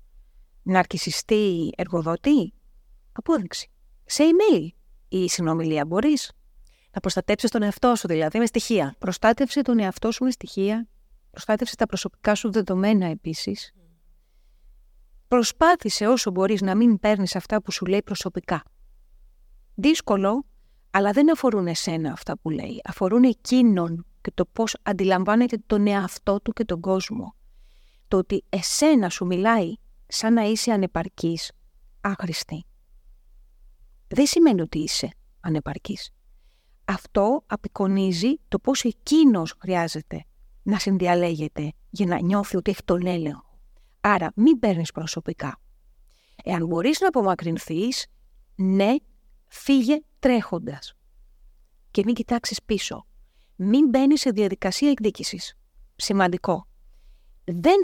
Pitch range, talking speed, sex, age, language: 175-230 Hz, 115 wpm, female, 30-49, Greek